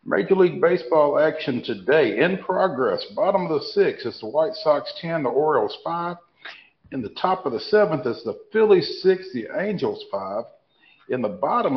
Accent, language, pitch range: American, English, 145-210 Hz